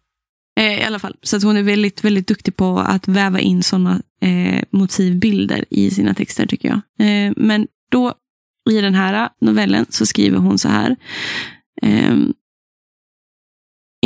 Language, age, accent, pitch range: Swedish, 20-39, native, 190-225 Hz